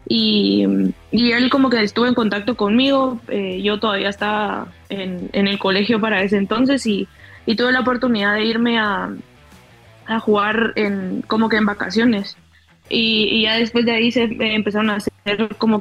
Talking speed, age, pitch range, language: 175 wpm, 20-39, 195-225 Hz, English